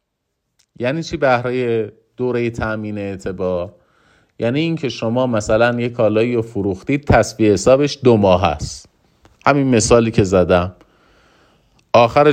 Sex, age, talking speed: male, 30-49, 115 wpm